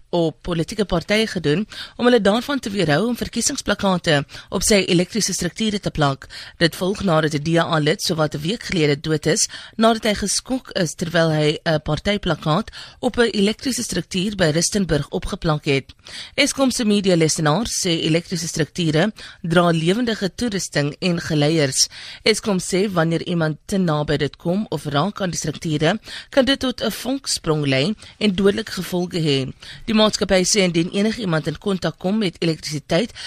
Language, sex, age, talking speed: English, female, 30-49, 170 wpm